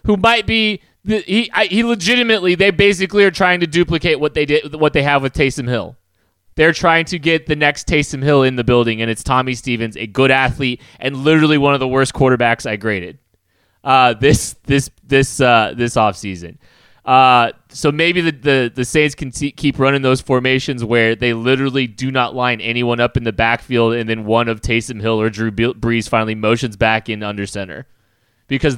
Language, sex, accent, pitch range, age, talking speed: English, male, American, 115-150 Hz, 20-39, 205 wpm